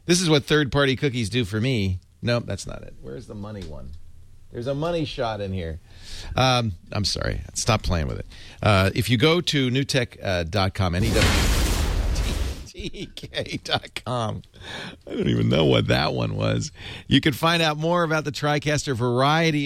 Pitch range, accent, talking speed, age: 85-130 Hz, American, 160 wpm, 40-59